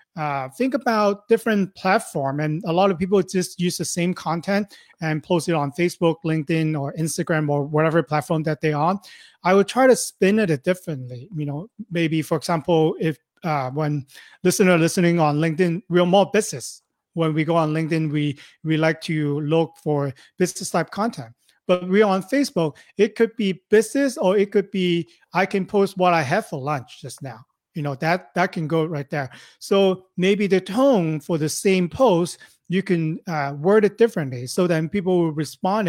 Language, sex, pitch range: English, male, 155-195 Hz